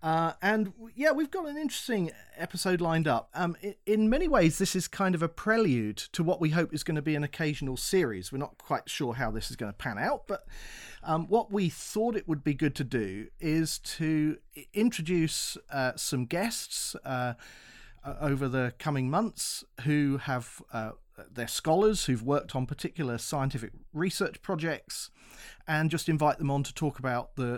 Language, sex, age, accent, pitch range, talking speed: English, male, 40-59, British, 130-180 Hz, 185 wpm